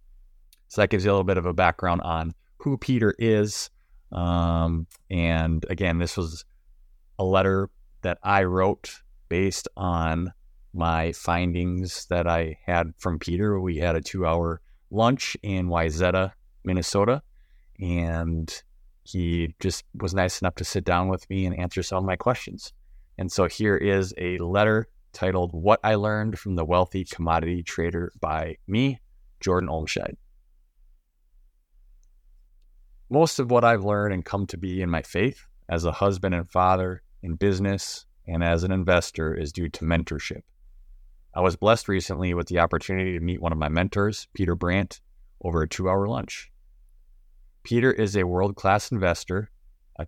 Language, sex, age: English, male, 30-49